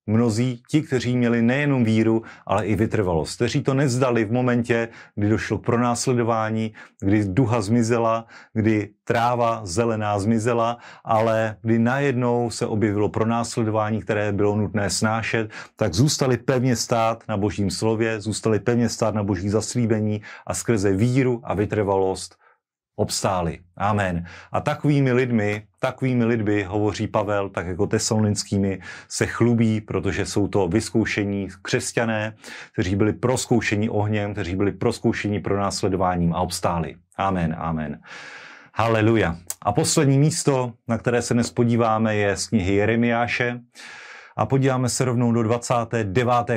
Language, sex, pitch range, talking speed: Slovak, male, 105-120 Hz, 130 wpm